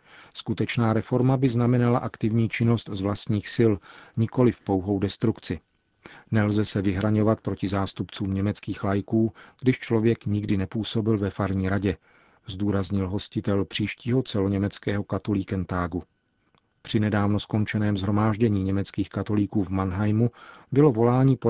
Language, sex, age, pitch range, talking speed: Czech, male, 40-59, 100-115 Hz, 120 wpm